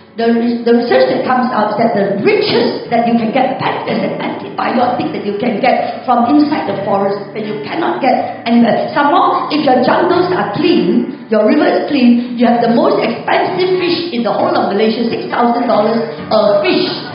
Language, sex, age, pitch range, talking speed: English, female, 50-69, 220-315 Hz, 185 wpm